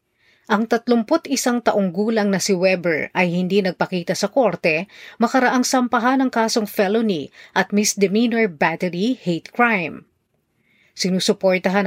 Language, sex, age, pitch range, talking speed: Filipino, female, 40-59, 180-245 Hz, 115 wpm